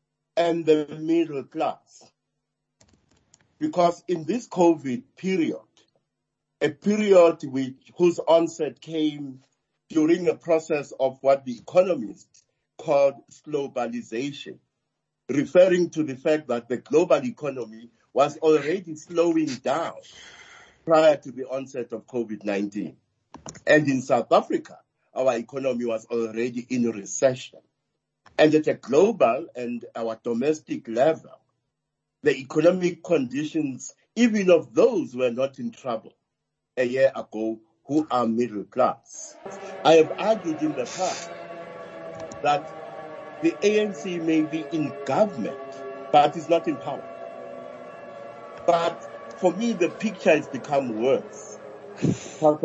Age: 50-69